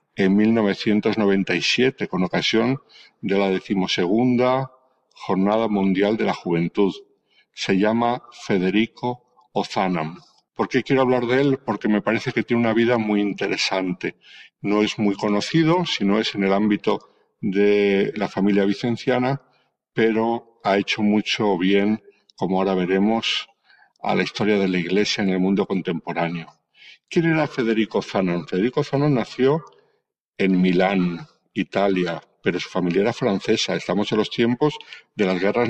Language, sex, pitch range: Spanish, male, 100-130 Hz